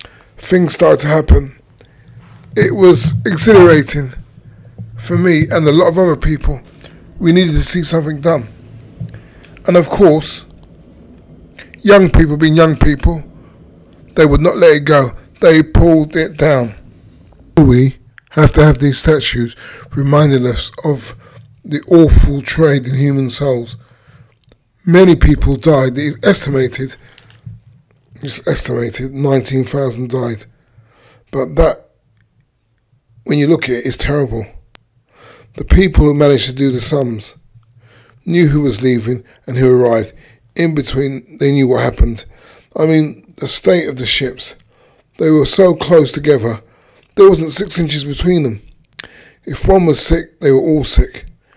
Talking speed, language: 140 wpm, English